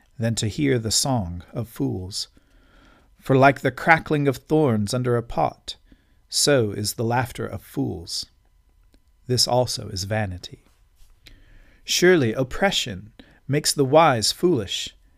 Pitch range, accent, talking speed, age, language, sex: 100-140 Hz, American, 125 wpm, 50-69, English, male